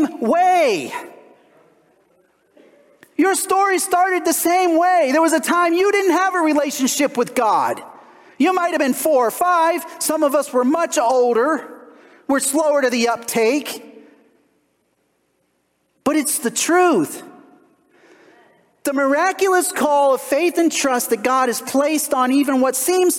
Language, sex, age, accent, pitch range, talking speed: English, male, 40-59, American, 230-335 Hz, 140 wpm